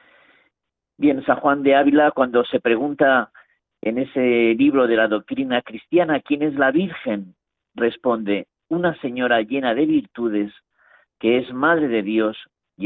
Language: Spanish